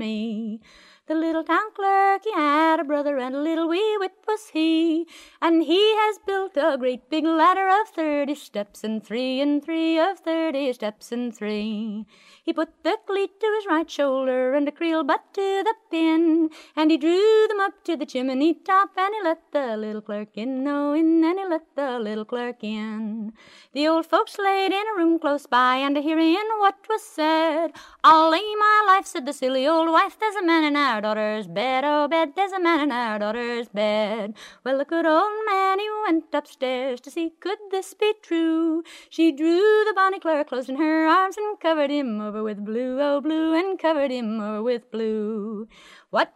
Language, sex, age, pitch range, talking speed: English, female, 30-49, 260-370 Hz, 195 wpm